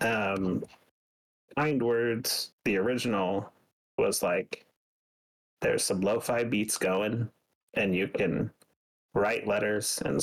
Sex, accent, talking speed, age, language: male, American, 105 wpm, 30-49, English